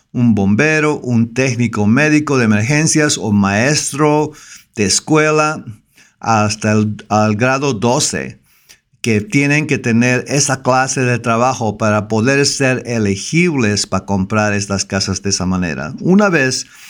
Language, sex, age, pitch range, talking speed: English, male, 50-69, 105-135 Hz, 130 wpm